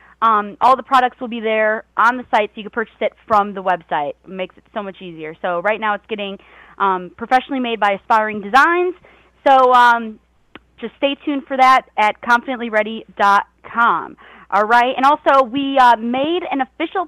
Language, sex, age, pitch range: English, female, 20-39, 200-265 Hz